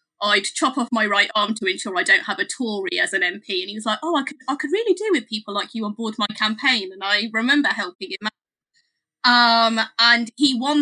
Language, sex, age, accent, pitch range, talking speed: English, female, 20-39, British, 200-250 Hz, 250 wpm